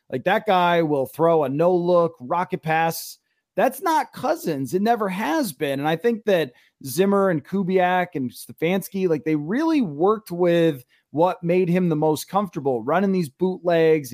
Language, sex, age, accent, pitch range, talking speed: English, male, 30-49, American, 160-205 Hz, 170 wpm